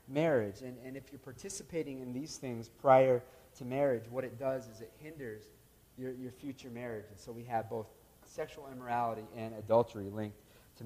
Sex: male